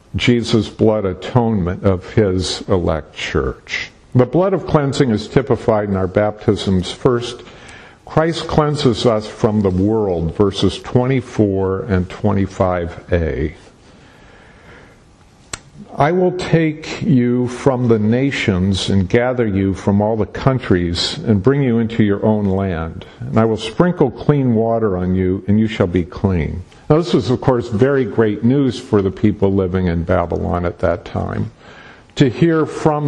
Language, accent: English, American